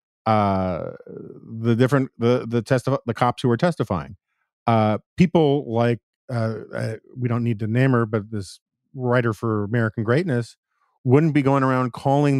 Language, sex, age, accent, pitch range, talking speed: English, male, 40-59, American, 110-130 Hz, 160 wpm